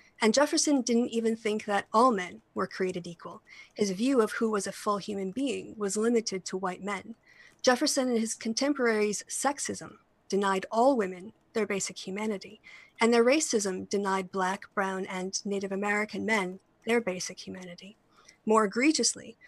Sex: female